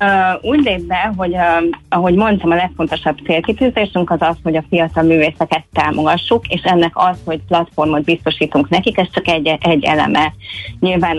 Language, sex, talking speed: Hungarian, female, 160 wpm